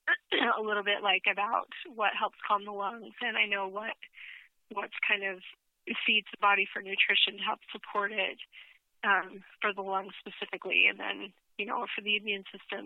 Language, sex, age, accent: English, female, 30-49, American